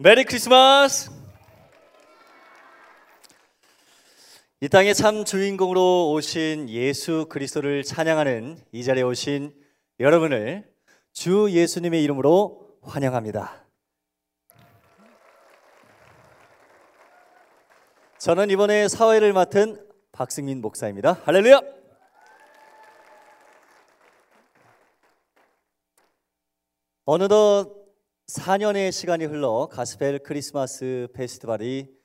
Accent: native